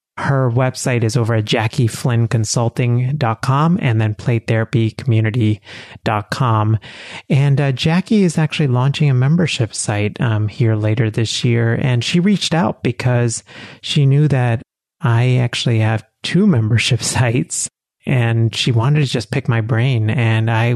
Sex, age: male, 30-49